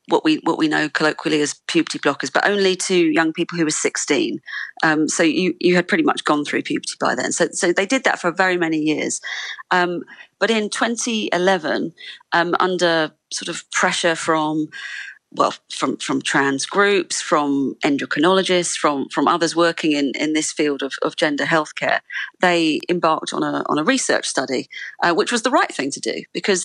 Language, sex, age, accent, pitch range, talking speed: English, female, 40-59, British, 160-210 Hz, 190 wpm